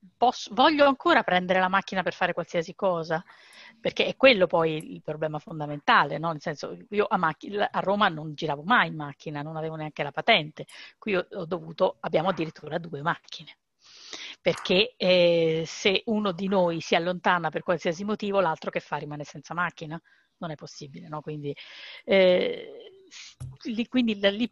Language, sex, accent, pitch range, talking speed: Italian, female, native, 165-200 Hz, 165 wpm